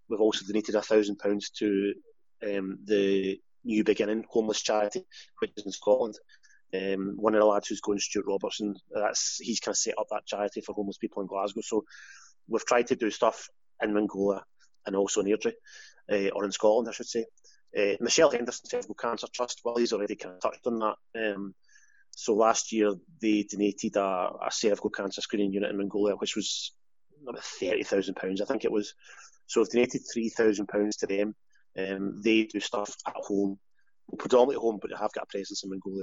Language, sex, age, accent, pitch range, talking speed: English, male, 30-49, British, 100-115 Hz, 190 wpm